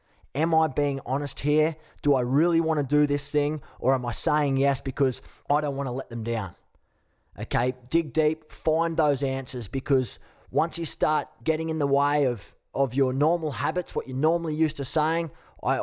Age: 20-39